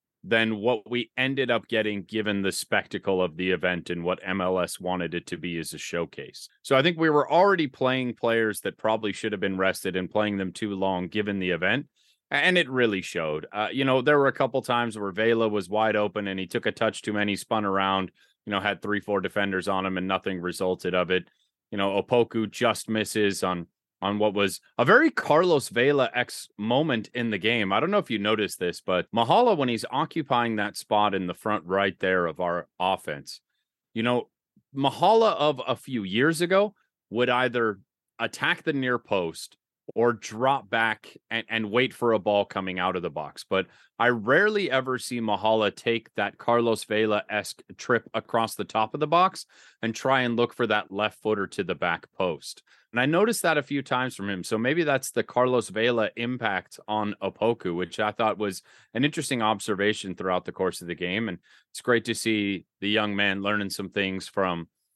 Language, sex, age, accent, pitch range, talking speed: English, male, 30-49, American, 95-120 Hz, 205 wpm